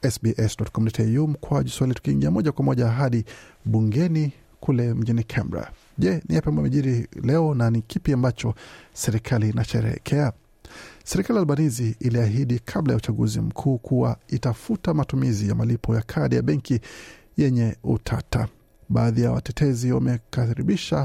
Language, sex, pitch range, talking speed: Swahili, male, 115-145 Hz, 125 wpm